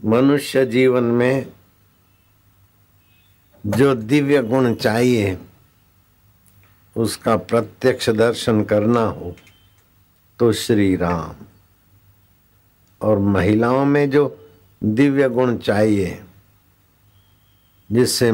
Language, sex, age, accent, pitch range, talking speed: Hindi, male, 60-79, native, 95-110 Hz, 75 wpm